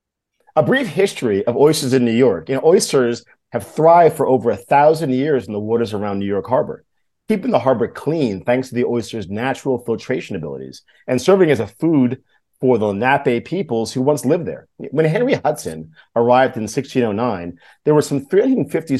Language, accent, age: English, American, 40-59